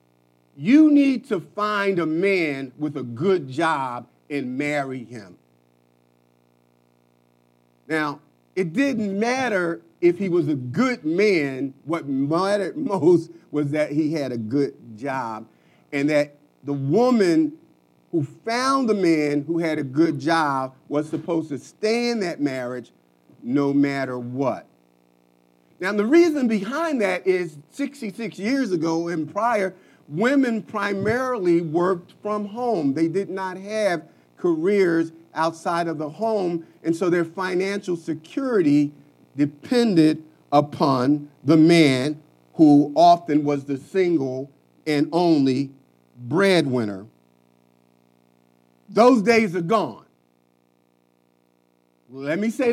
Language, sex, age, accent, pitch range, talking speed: English, male, 40-59, American, 125-200 Hz, 120 wpm